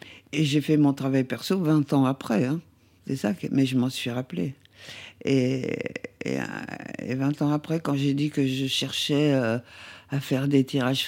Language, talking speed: French, 185 wpm